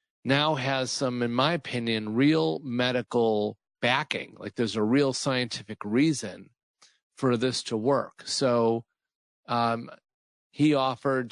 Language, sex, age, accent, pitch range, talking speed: English, male, 40-59, American, 115-140 Hz, 120 wpm